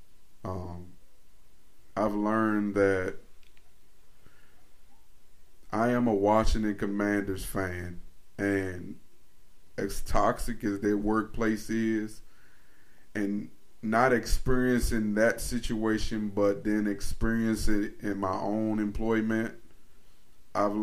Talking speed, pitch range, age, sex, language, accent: 90 wpm, 95-110 Hz, 20-39, male, English, American